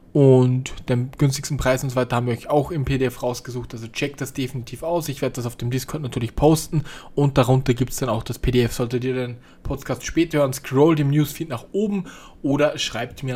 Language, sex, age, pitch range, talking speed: German, male, 20-39, 130-165 Hz, 220 wpm